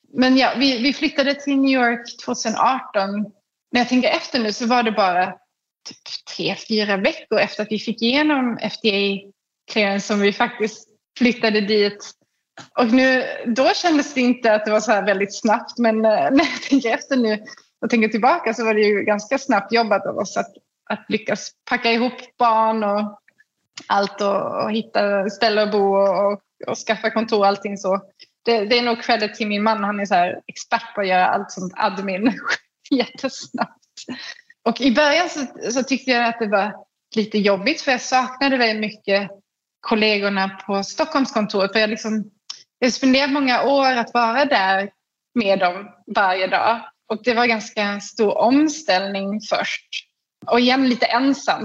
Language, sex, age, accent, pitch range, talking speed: Swedish, female, 20-39, native, 205-255 Hz, 175 wpm